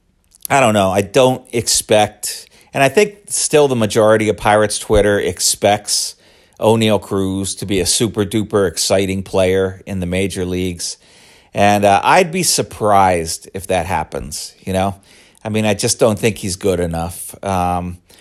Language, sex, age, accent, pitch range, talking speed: English, male, 40-59, American, 90-110 Hz, 160 wpm